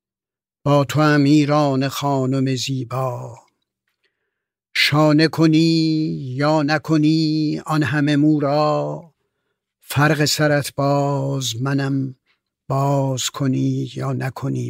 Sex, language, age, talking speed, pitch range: male, English, 60-79, 80 wpm, 130-150 Hz